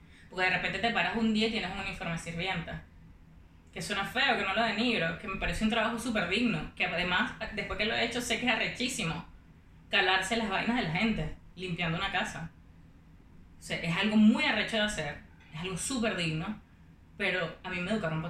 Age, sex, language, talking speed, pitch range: 20-39, female, Spanish, 210 wpm, 165-225 Hz